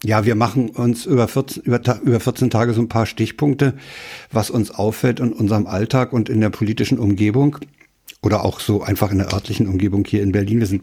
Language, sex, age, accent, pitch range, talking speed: German, male, 60-79, German, 105-130 Hz, 200 wpm